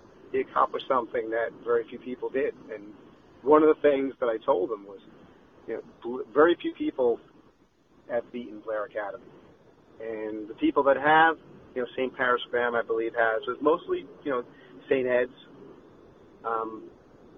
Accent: American